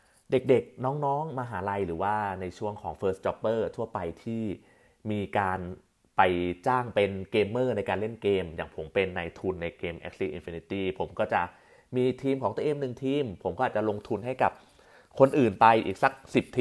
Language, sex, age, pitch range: Thai, male, 30-49, 90-120 Hz